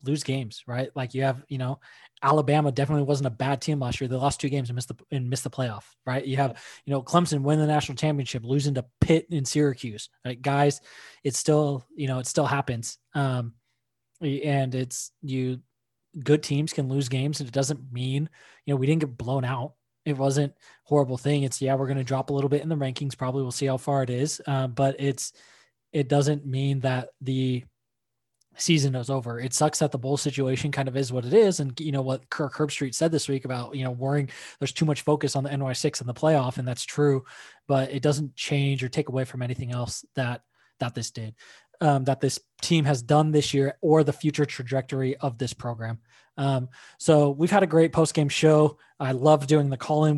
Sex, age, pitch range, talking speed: male, 20-39, 130-150 Hz, 225 wpm